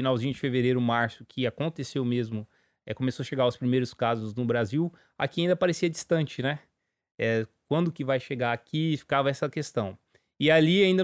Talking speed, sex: 180 wpm, male